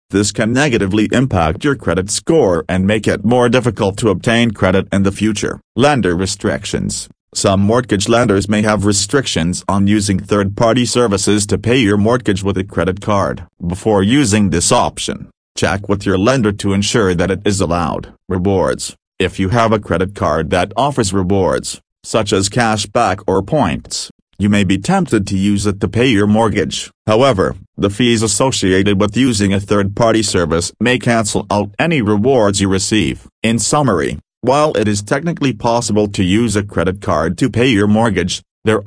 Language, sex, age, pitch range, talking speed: English, male, 40-59, 95-115 Hz, 175 wpm